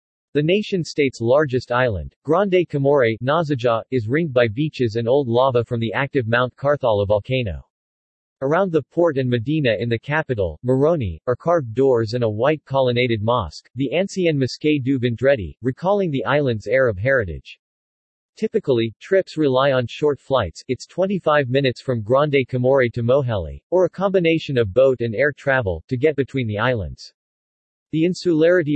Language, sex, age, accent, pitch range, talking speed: English, male, 40-59, American, 115-150 Hz, 155 wpm